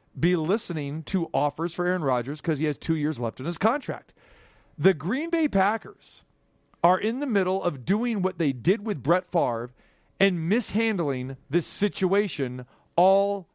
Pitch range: 155-205 Hz